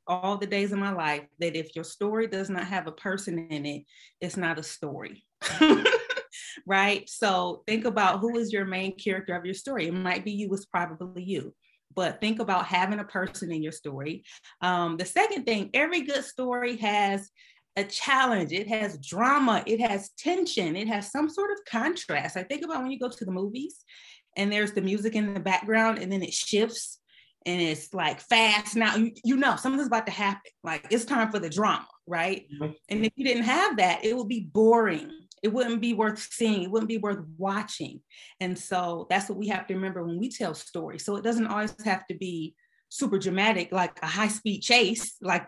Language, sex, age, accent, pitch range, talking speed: English, female, 30-49, American, 185-235 Hz, 205 wpm